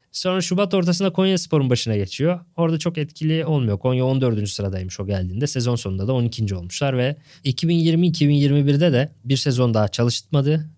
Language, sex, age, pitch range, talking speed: Turkish, male, 20-39, 120-155 Hz, 150 wpm